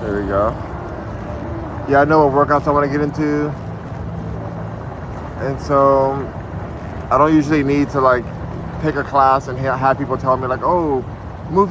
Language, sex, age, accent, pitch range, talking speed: English, male, 20-39, American, 115-150 Hz, 165 wpm